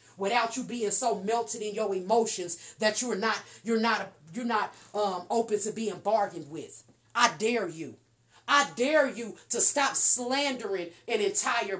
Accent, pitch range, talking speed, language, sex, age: American, 180-260 Hz, 165 wpm, English, female, 30-49